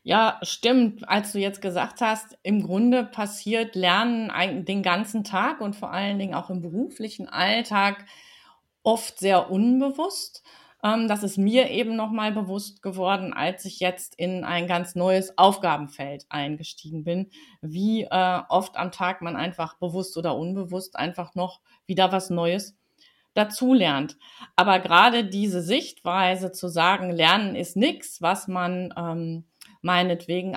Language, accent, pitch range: German, German, 175-220 Hz